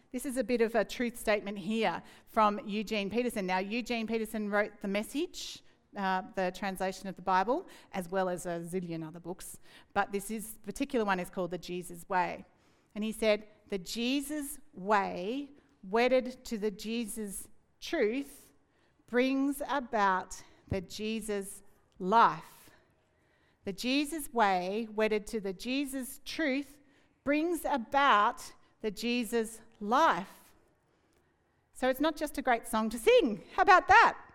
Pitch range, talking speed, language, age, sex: 205-270 Hz, 145 wpm, English, 40-59, female